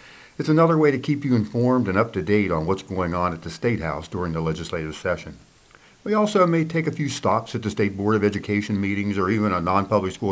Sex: male